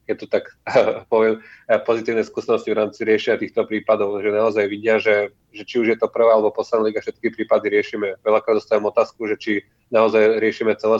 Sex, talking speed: male, 190 wpm